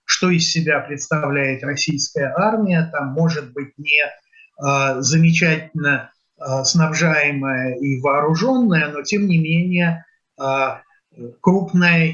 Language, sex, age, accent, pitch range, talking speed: Russian, male, 30-49, native, 145-180 Hz, 95 wpm